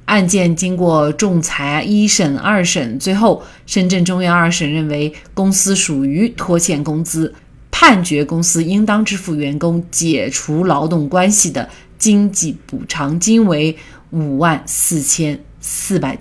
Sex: female